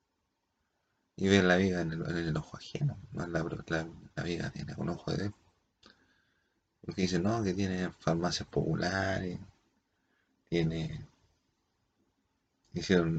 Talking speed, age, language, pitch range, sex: 125 wpm, 30-49, Spanish, 85-105 Hz, male